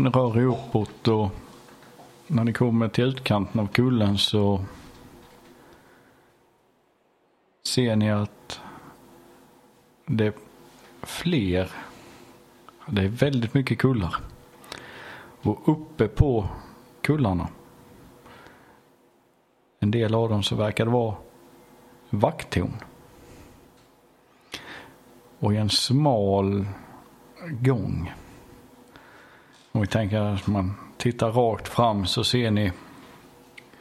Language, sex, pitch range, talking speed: Swedish, male, 100-125 Hz, 90 wpm